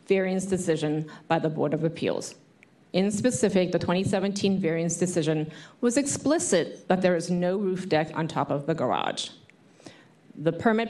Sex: female